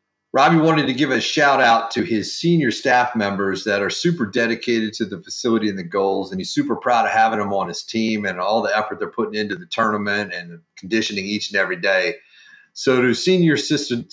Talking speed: 215 wpm